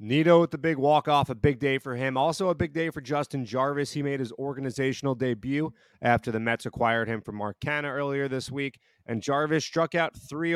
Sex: male